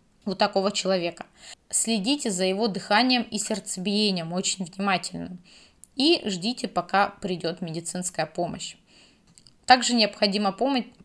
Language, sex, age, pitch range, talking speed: Russian, female, 20-39, 185-230 Hz, 110 wpm